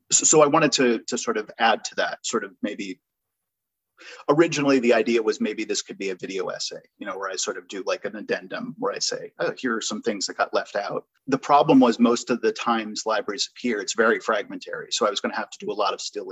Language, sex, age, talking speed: English, male, 30-49, 260 wpm